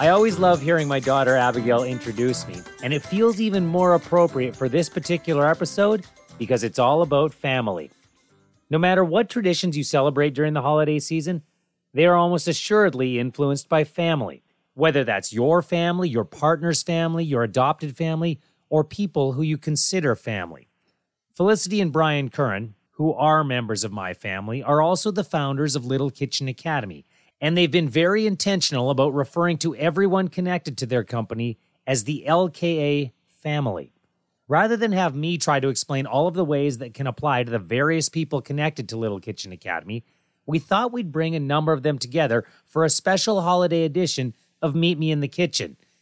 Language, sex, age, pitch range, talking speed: English, male, 30-49, 130-175 Hz, 175 wpm